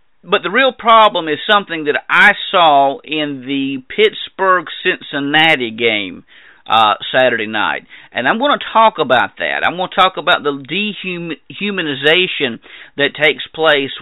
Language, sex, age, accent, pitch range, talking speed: English, male, 50-69, American, 130-175 Hz, 140 wpm